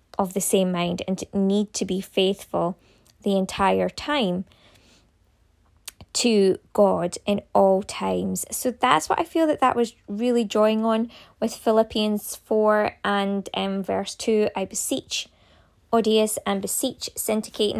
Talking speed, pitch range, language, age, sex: 140 wpm, 185-225 Hz, English, 20-39, female